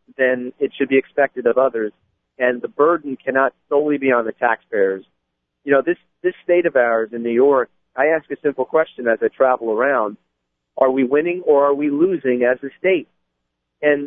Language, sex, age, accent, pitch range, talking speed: English, male, 40-59, American, 120-150 Hz, 195 wpm